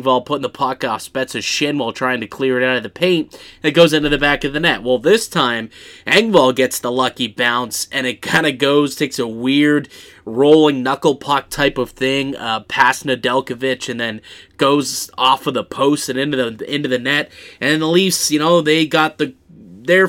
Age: 20-39